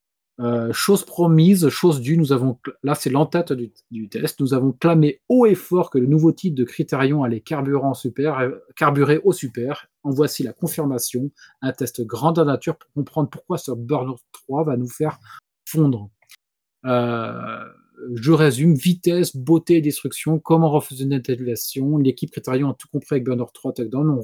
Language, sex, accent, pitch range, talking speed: French, male, French, 130-160 Hz, 175 wpm